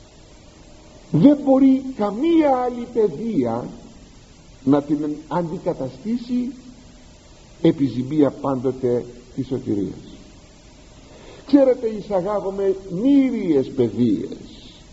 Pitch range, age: 140-225 Hz, 50-69